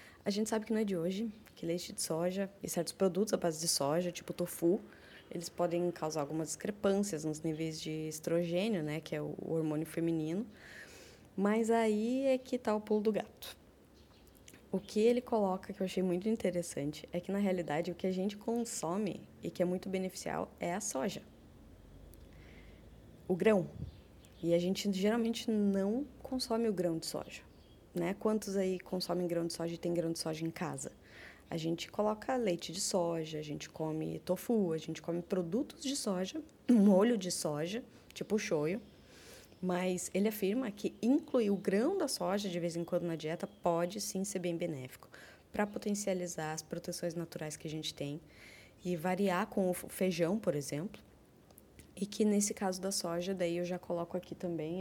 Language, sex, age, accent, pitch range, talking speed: Portuguese, female, 20-39, Brazilian, 165-205 Hz, 185 wpm